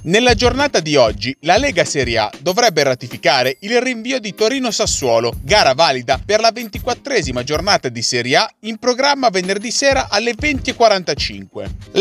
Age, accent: 30-49, native